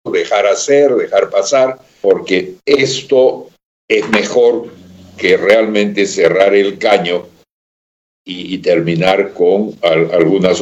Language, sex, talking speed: Spanish, male, 100 wpm